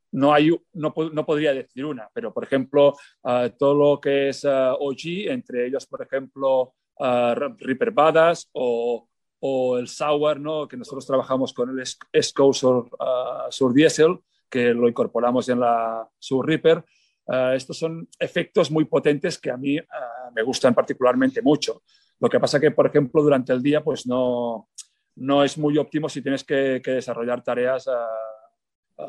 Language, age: Italian, 40-59